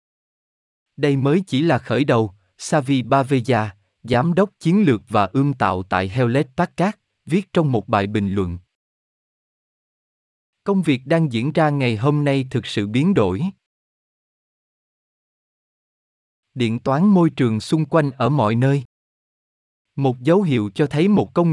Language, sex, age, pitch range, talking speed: Vietnamese, male, 20-39, 110-160 Hz, 145 wpm